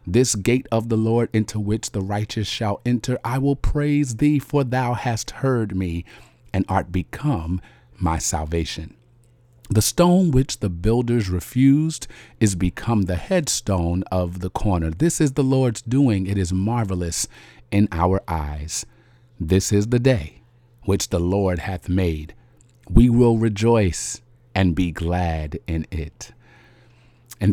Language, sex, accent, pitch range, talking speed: English, male, American, 95-120 Hz, 145 wpm